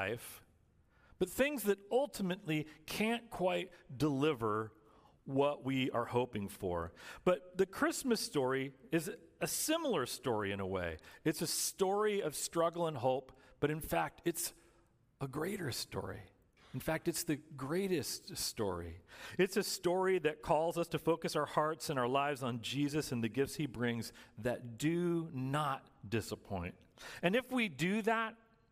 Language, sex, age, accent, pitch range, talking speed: English, male, 40-59, American, 115-170 Hz, 150 wpm